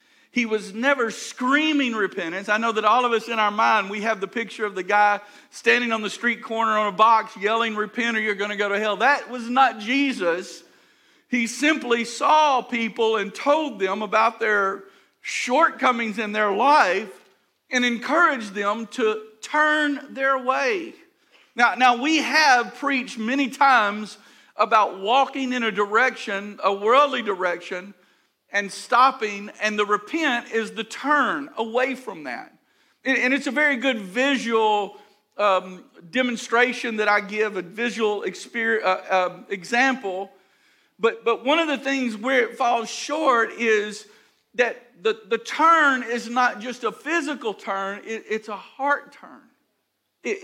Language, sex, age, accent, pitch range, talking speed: English, male, 50-69, American, 210-270 Hz, 160 wpm